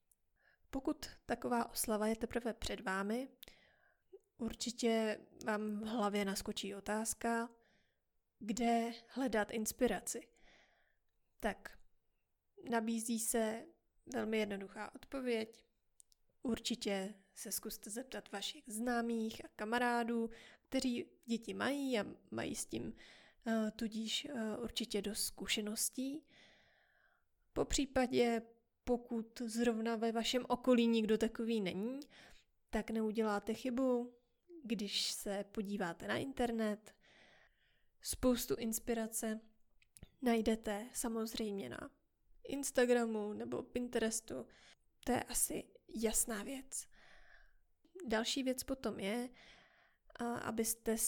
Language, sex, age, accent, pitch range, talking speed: Czech, female, 20-39, native, 215-240 Hz, 90 wpm